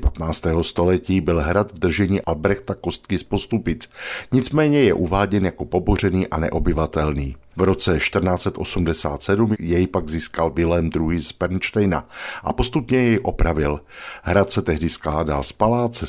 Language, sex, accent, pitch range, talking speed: Czech, male, native, 85-105 Hz, 140 wpm